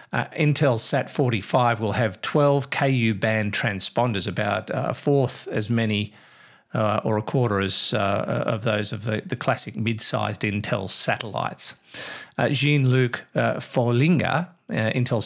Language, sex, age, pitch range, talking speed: English, male, 50-69, 105-130 Hz, 140 wpm